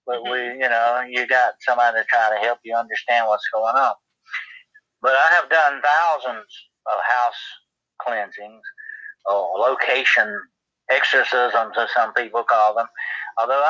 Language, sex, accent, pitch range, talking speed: English, male, American, 115-195 Hz, 145 wpm